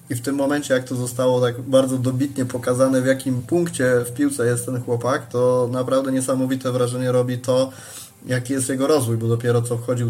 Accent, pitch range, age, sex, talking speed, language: native, 120-130 Hz, 20-39, male, 195 wpm, Polish